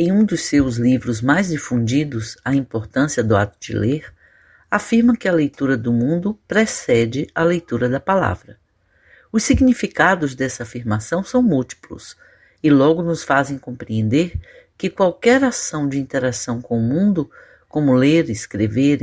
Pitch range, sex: 125-180 Hz, female